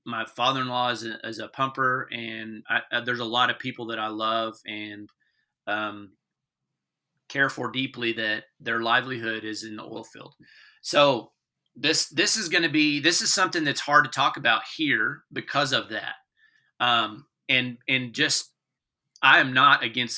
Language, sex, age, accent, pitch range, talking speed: English, male, 30-49, American, 115-140 Hz, 175 wpm